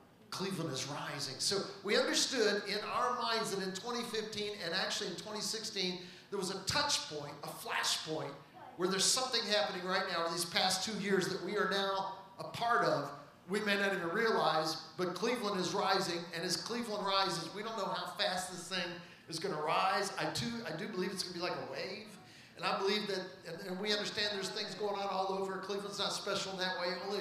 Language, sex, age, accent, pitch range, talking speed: English, male, 40-59, American, 185-220 Hz, 220 wpm